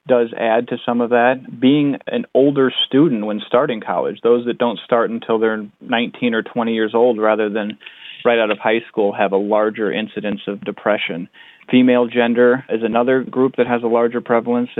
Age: 30-49